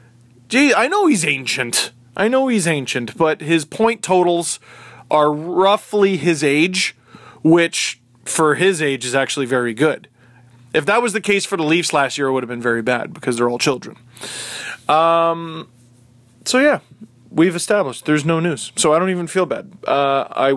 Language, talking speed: English, 180 wpm